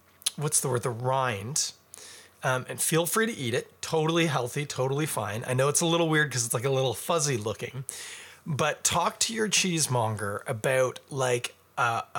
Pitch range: 125-175 Hz